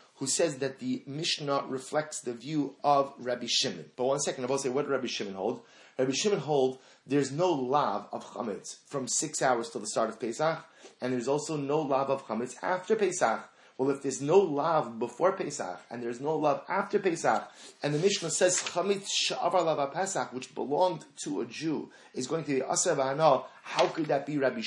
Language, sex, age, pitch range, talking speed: English, male, 30-49, 125-160 Hz, 195 wpm